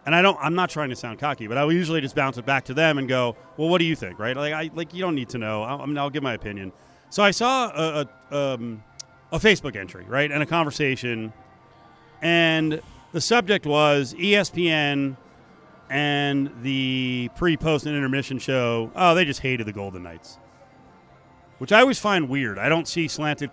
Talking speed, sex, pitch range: 205 wpm, male, 125-165 Hz